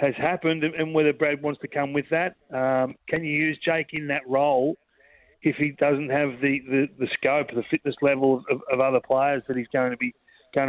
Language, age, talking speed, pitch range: English, 30-49, 220 wpm, 125-140 Hz